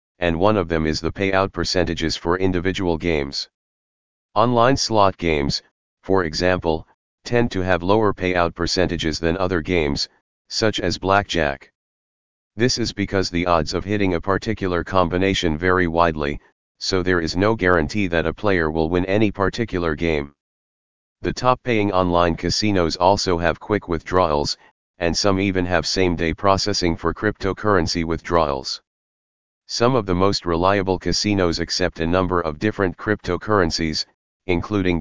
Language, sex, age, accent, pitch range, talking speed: English, male, 40-59, American, 85-100 Hz, 140 wpm